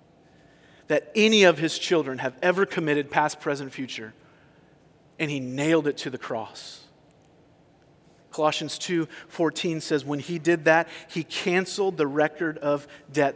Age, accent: 40-59, American